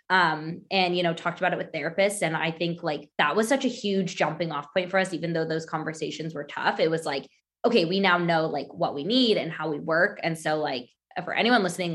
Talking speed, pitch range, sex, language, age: 250 wpm, 160-185 Hz, female, English, 20-39